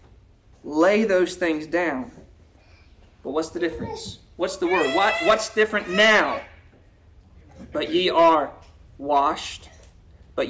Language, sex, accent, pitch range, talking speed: English, male, American, 160-240 Hz, 110 wpm